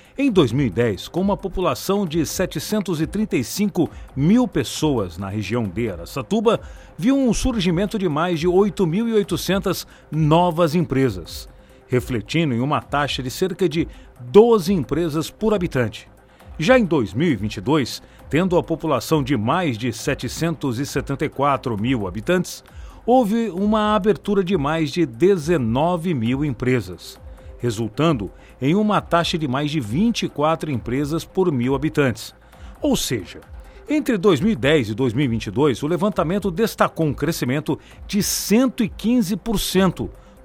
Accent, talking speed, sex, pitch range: Brazilian, 115 wpm, male, 125-185 Hz